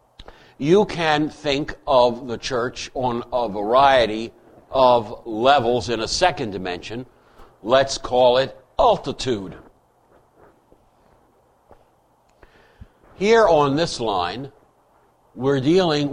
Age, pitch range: 60-79, 110-135 Hz